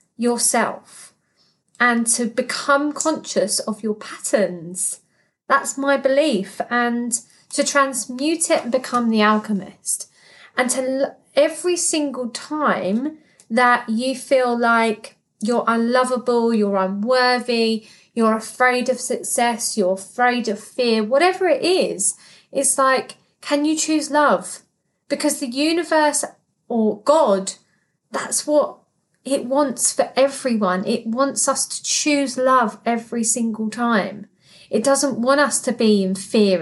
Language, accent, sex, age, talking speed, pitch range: English, British, female, 30-49, 125 wpm, 215-275 Hz